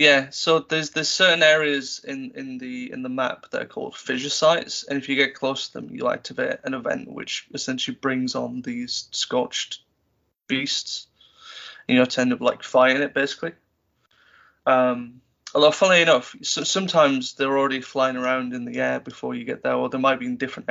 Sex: male